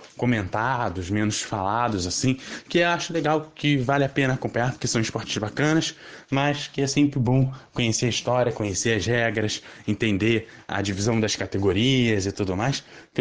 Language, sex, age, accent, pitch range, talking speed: Portuguese, male, 20-39, Brazilian, 105-125 Hz, 170 wpm